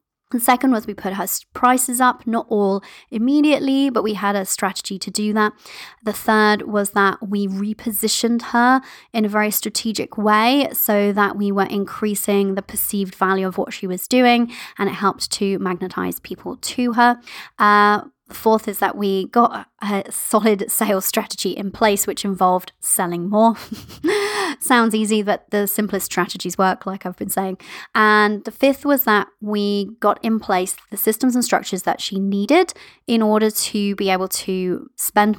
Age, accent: 20-39, British